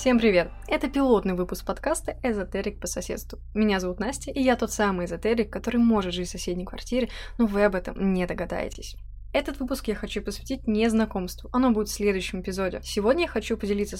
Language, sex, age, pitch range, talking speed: Russian, female, 20-39, 190-235 Hz, 190 wpm